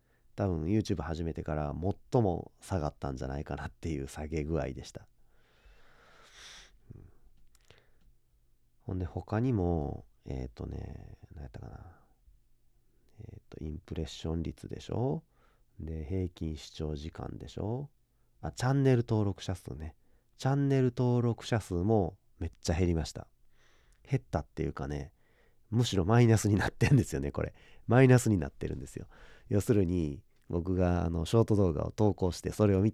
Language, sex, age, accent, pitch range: Japanese, male, 40-59, native, 75-110 Hz